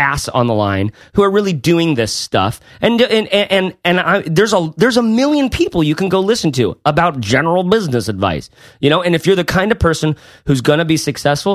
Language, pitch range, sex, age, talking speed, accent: English, 140-190 Hz, male, 30-49, 220 wpm, American